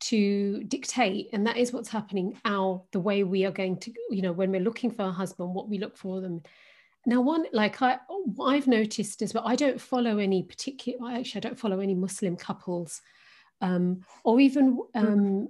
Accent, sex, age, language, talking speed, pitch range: British, female, 40-59, English, 200 wpm, 195-245 Hz